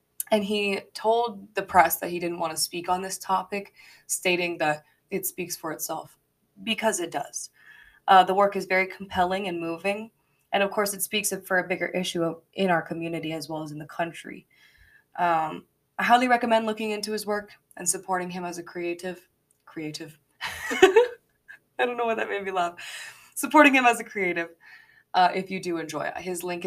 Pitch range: 170-205 Hz